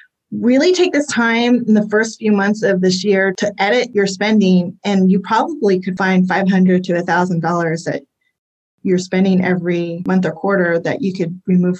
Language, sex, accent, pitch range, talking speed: English, female, American, 180-205 Hz, 180 wpm